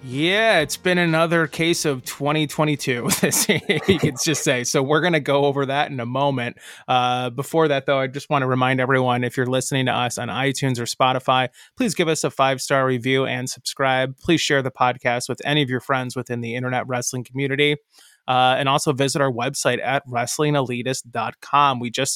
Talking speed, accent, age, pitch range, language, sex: 195 wpm, American, 20-39, 120-145 Hz, English, male